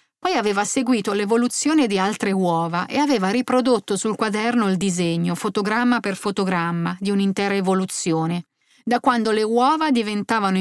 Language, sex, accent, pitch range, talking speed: Italian, female, native, 185-225 Hz, 140 wpm